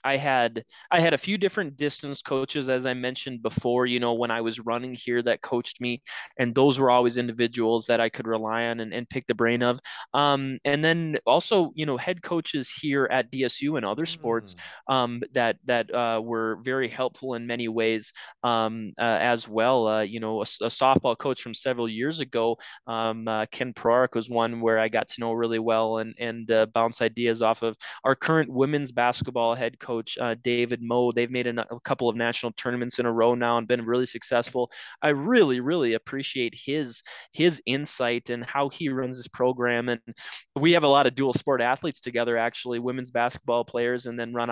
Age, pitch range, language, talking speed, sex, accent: 20-39, 115-135 Hz, English, 205 wpm, male, American